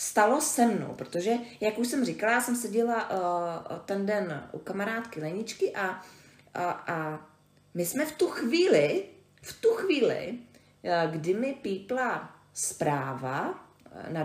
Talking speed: 125 wpm